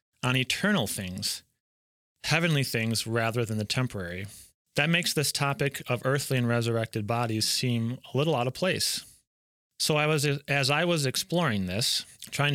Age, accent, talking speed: 30-49, American, 160 wpm